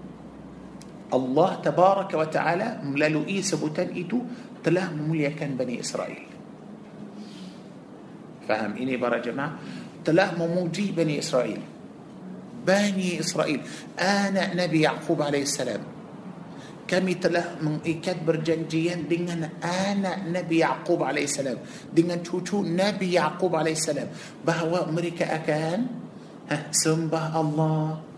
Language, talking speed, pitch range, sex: Malay, 100 wpm, 160-190 Hz, male